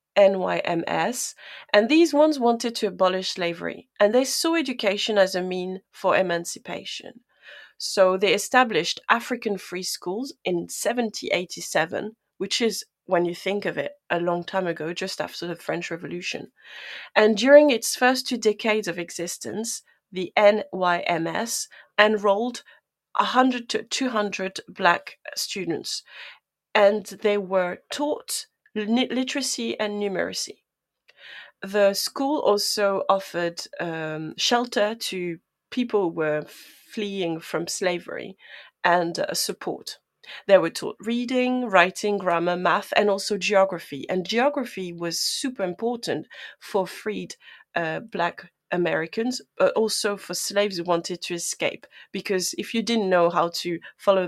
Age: 30-49